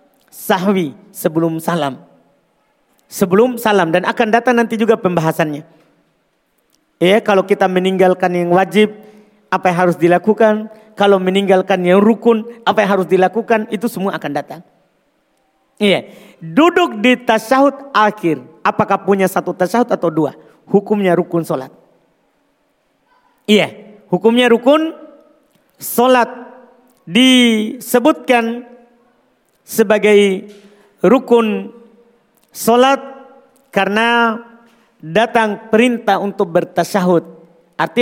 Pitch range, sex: 190-245 Hz, male